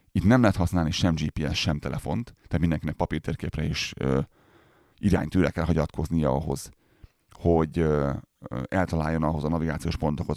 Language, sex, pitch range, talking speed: Hungarian, male, 75-95 Hz, 145 wpm